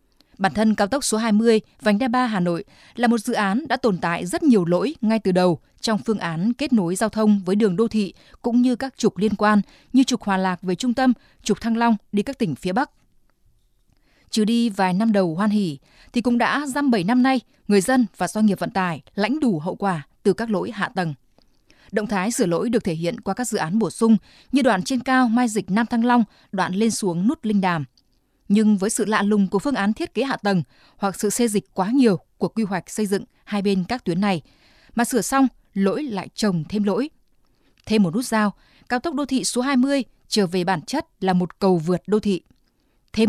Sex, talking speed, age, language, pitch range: female, 235 wpm, 20-39, Vietnamese, 190-235 Hz